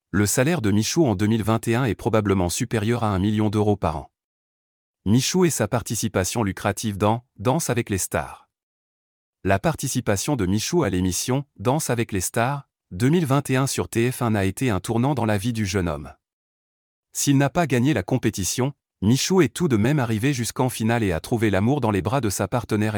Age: 30-49